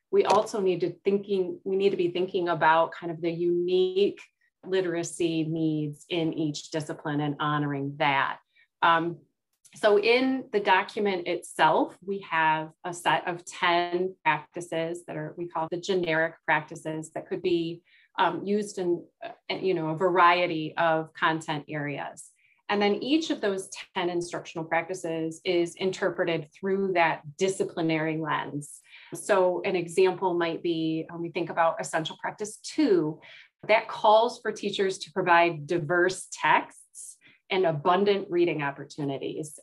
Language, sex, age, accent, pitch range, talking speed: English, female, 30-49, American, 160-195 Hz, 145 wpm